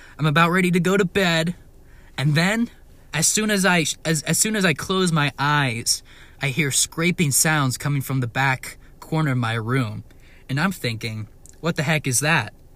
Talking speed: 175 wpm